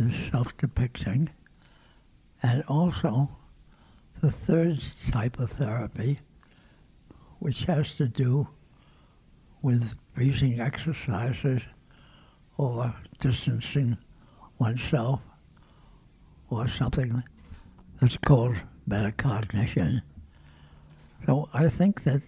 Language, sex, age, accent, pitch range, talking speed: English, male, 60-79, American, 115-140 Hz, 75 wpm